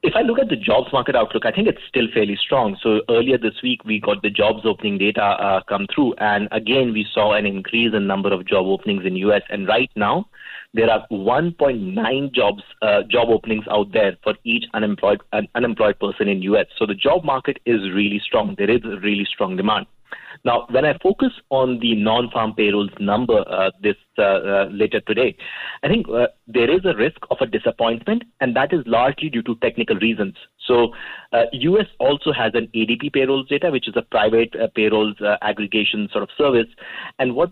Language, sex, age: English, male, 30-49